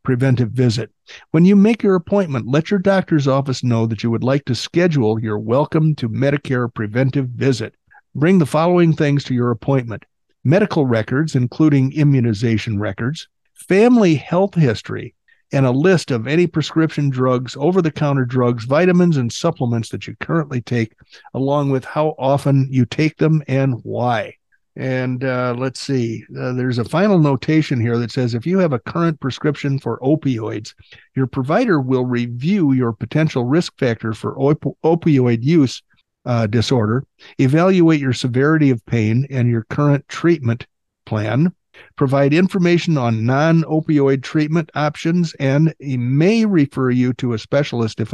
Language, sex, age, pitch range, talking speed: English, male, 50-69, 120-155 Hz, 150 wpm